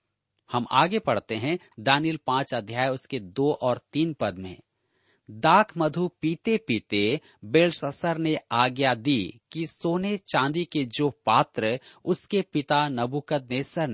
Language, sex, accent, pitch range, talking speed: Hindi, male, native, 120-165 Hz, 130 wpm